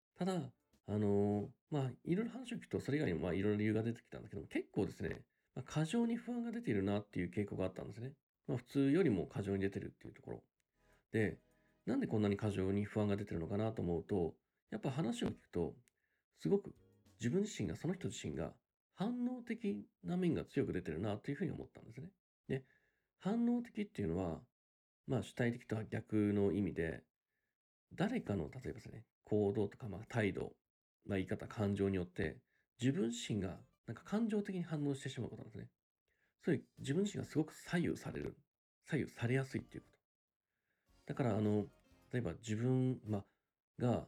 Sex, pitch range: male, 100-150 Hz